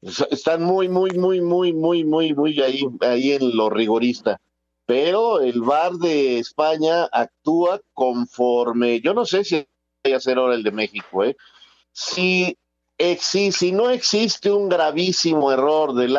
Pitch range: 115-165 Hz